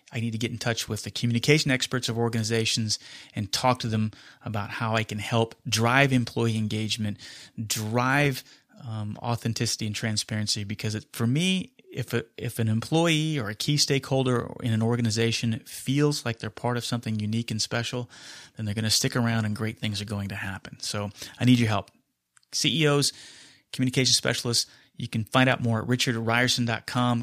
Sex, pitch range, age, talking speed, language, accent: male, 110-130 Hz, 30-49, 180 wpm, English, American